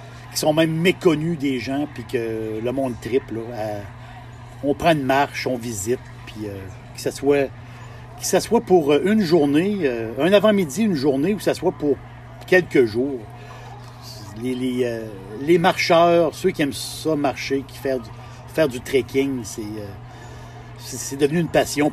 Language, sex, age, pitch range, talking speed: French, male, 60-79, 120-145 Hz, 170 wpm